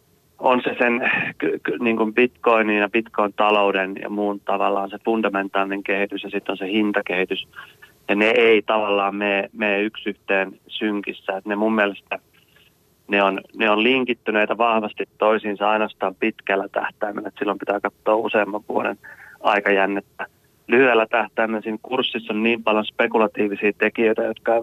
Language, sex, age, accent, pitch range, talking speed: Finnish, male, 30-49, native, 100-110 Hz, 140 wpm